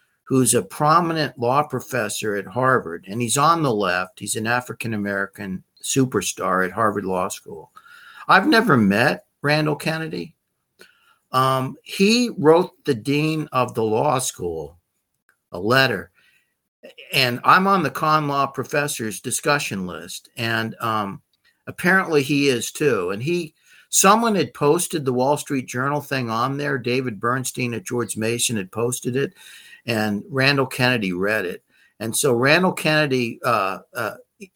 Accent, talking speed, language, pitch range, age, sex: American, 140 wpm, English, 115-150 Hz, 60-79, male